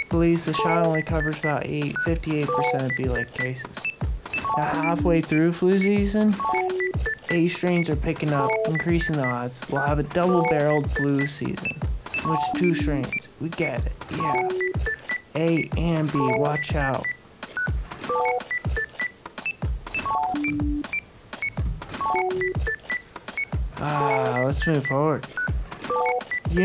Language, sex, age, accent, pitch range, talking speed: English, male, 20-39, American, 140-200 Hz, 110 wpm